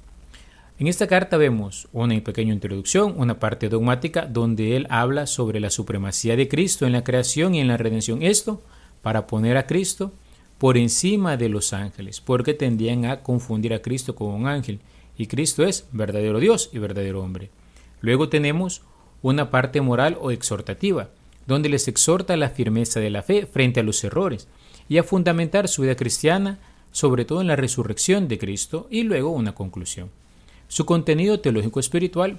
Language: Spanish